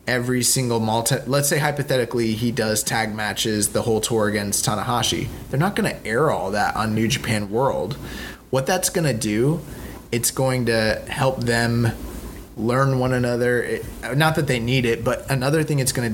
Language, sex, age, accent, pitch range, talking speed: English, male, 20-39, American, 115-145 Hz, 185 wpm